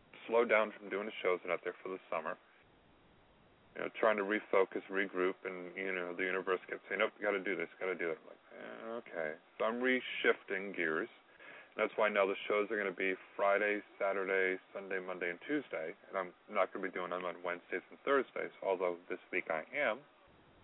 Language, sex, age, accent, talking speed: English, male, 30-49, American, 210 wpm